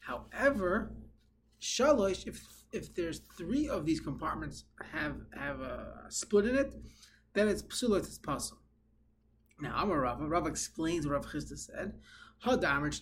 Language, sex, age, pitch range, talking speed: English, male, 20-39, 140-205 Hz, 145 wpm